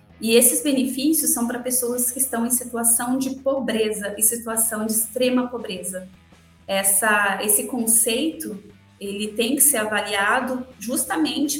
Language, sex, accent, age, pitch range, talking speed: Portuguese, female, Brazilian, 20-39, 200-250 Hz, 135 wpm